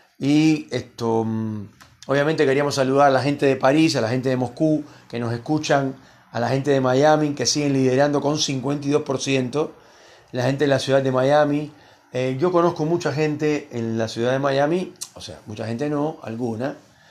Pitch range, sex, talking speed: 125-150 Hz, male, 180 wpm